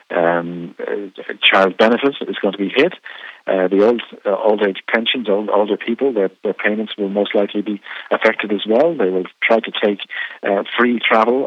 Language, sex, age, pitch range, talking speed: English, male, 40-59, 90-105 Hz, 195 wpm